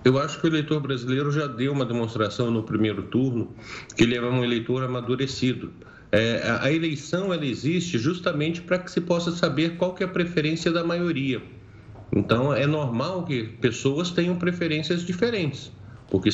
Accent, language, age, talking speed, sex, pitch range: Brazilian, Portuguese, 50-69, 170 wpm, male, 115-165 Hz